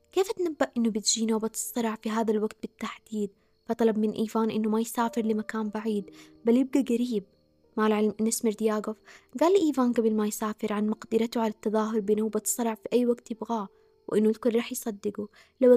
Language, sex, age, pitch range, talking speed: Arabic, female, 20-39, 215-250 Hz, 170 wpm